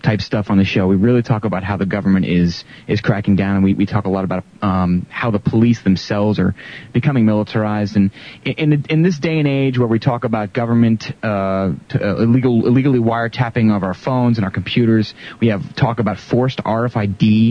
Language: English